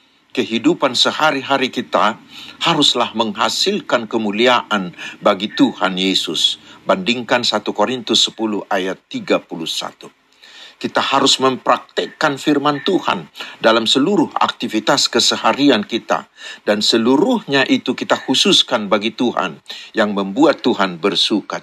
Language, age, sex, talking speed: Indonesian, 50-69, male, 100 wpm